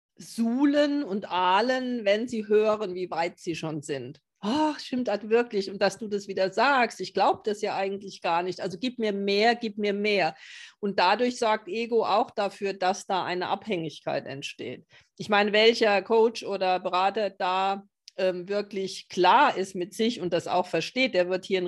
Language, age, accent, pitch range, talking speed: German, 40-59, German, 185-220 Hz, 185 wpm